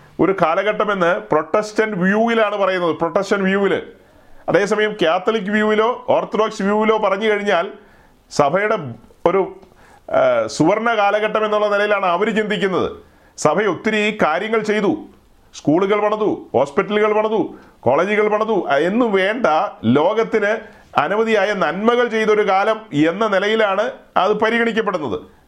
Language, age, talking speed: Malayalam, 40-59, 95 wpm